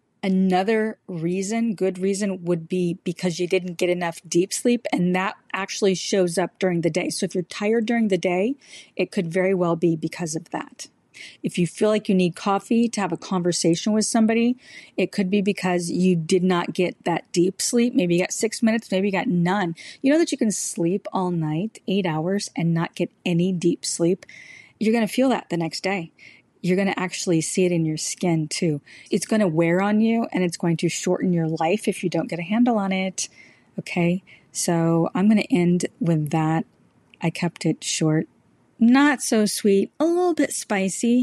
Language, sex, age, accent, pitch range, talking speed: English, female, 30-49, American, 175-220 Hz, 210 wpm